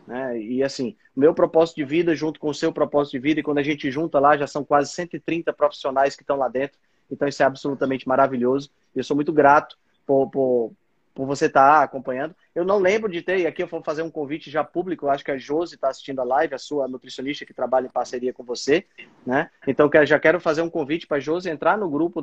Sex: male